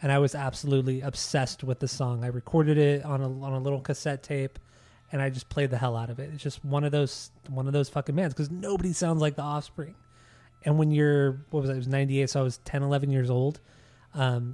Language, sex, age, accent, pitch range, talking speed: English, male, 20-39, American, 125-145 Hz, 250 wpm